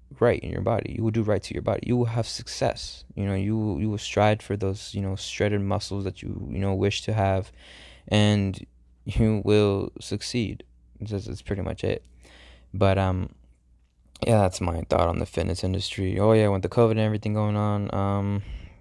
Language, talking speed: English, 200 wpm